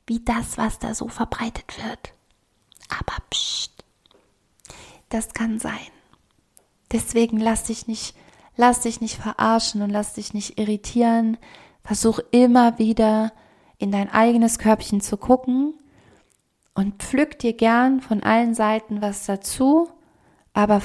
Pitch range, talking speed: 205-230 Hz, 125 wpm